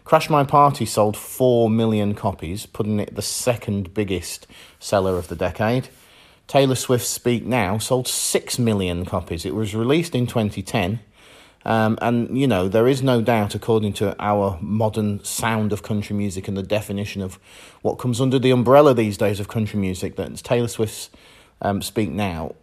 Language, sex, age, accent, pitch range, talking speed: English, male, 30-49, British, 100-120 Hz, 170 wpm